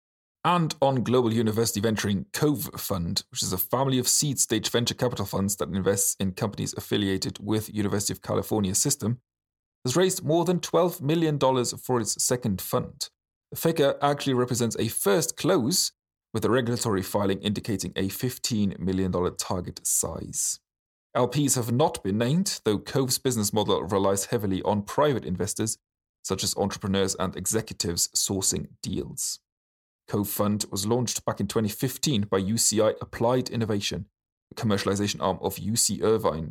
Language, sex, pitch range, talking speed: English, male, 95-125 Hz, 150 wpm